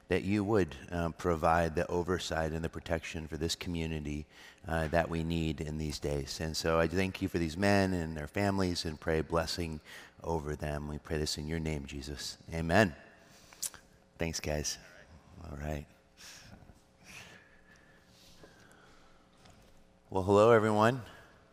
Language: English